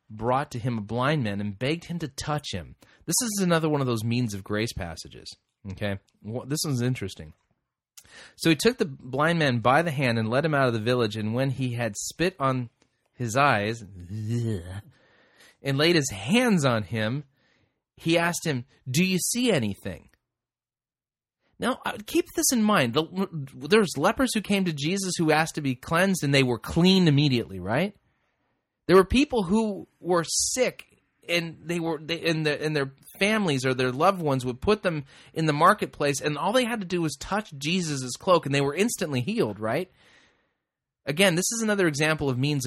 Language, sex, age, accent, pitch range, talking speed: English, male, 30-49, American, 120-170 Hz, 190 wpm